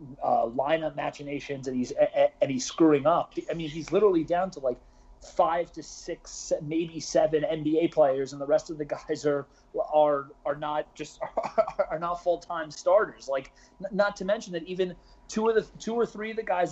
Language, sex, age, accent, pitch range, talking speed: English, male, 30-49, American, 140-175 Hz, 195 wpm